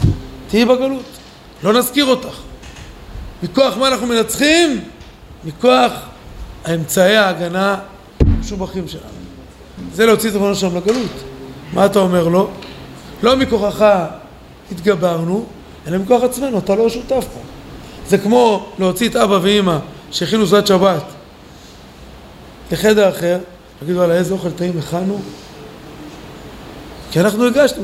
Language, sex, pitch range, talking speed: Hebrew, male, 175-225 Hz, 120 wpm